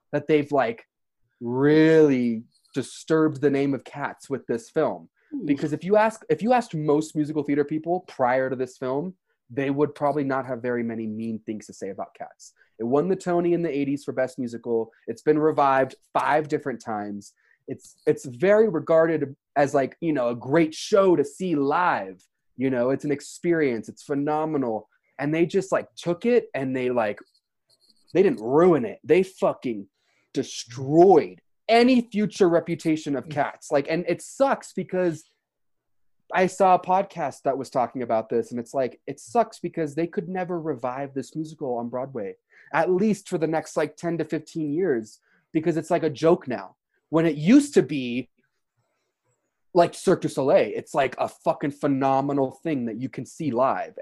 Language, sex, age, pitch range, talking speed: English, male, 20-39, 130-170 Hz, 180 wpm